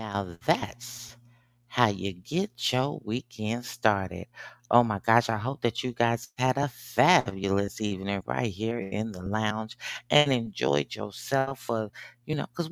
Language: English